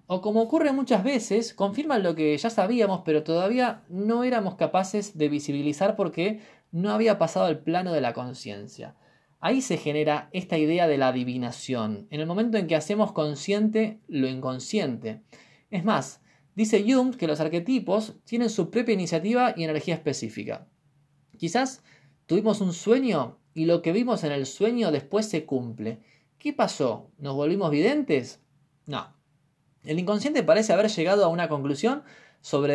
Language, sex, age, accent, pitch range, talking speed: Spanish, male, 20-39, Argentinian, 145-210 Hz, 160 wpm